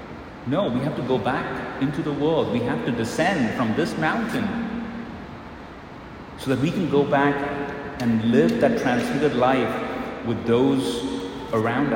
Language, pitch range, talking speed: English, 115-140 Hz, 150 wpm